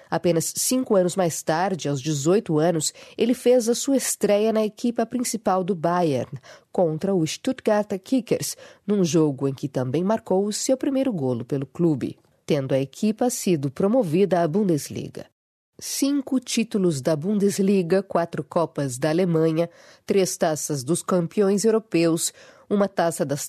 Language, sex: Portuguese, female